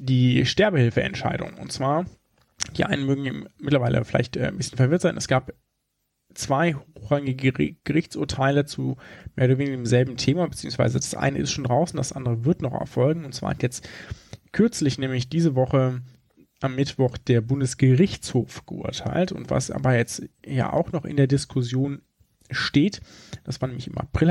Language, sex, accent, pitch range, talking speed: German, male, German, 125-160 Hz, 165 wpm